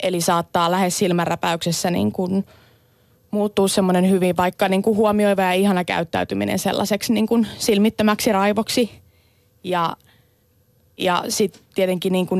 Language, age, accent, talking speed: Finnish, 20-39, native, 130 wpm